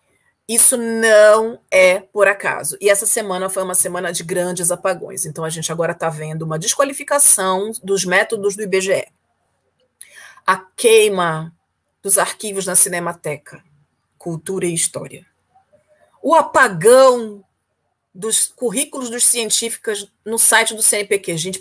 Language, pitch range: Portuguese, 170-205 Hz